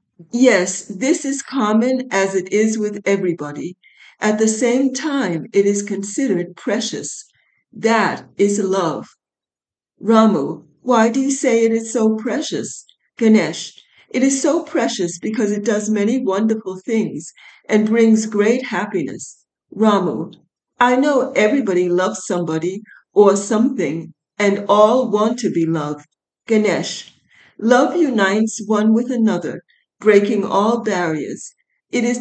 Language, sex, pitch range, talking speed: English, female, 190-240 Hz, 130 wpm